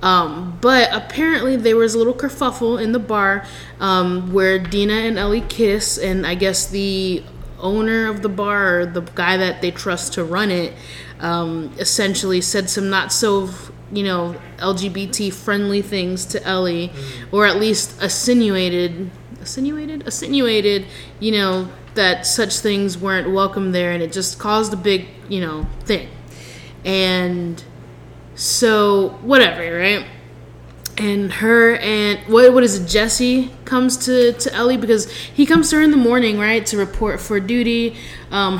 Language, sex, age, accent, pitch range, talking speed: English, female, 20-39, American, 180-225 Hz, 155 wpm